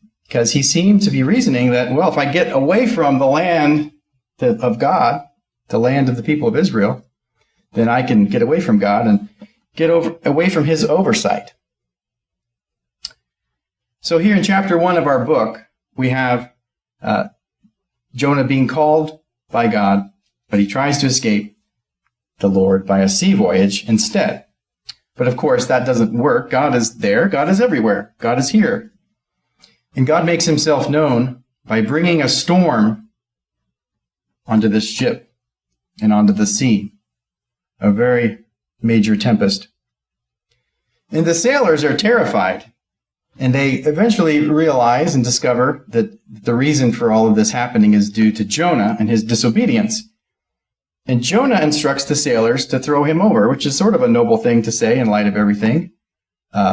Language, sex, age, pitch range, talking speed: English, male, 40-59, 110-175 Hz, 155 wpm